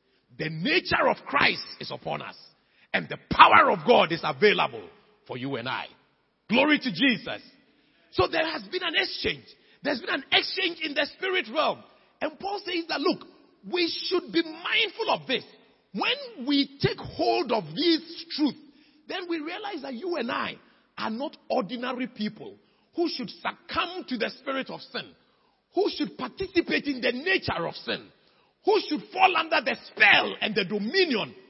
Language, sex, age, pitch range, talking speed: English, male, 40-59, 220-350 Hz, 170 wpm